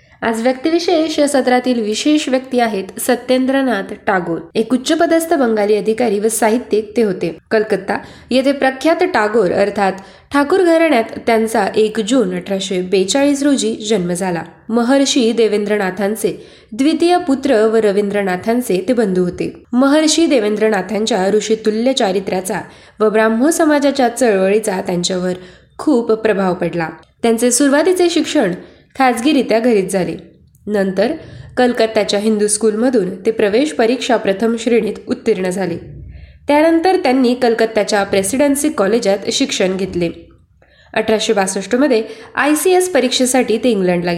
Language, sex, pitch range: Marathi, female, 200-260 Hz